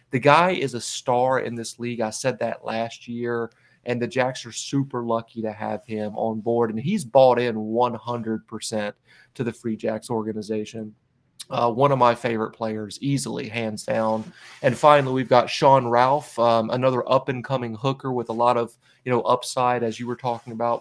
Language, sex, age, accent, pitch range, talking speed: English, male, 30-49, American, 115-130 Hz, 180 wpm